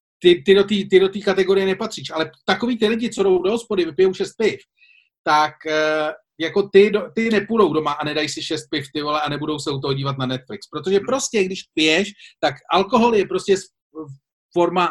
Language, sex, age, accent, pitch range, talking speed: Czech, male, 40-59, native, 155-205 Hz, 190 wpm